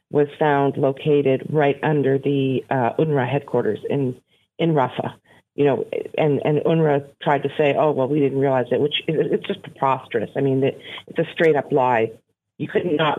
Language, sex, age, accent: English, female, 50-69, American